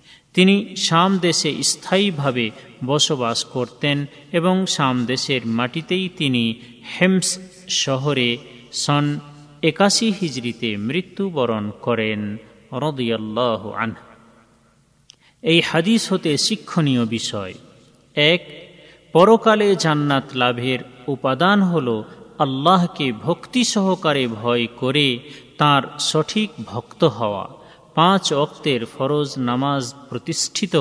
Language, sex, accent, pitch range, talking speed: Bengali, male, native, 125-175 Hz, 75 wpm